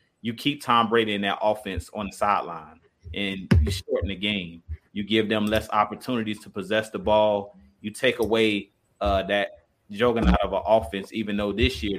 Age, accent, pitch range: 30-49, American, 100-115 Hz